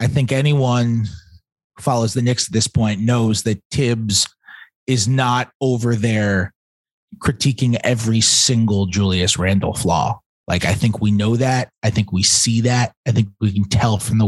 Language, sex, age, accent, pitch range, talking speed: English, male, 30-49, American, 100-130 Hz, 170 wpm